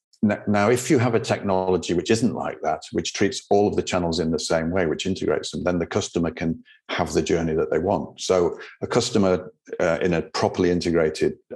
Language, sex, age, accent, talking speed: English, male, 50-69, British, 215 wpm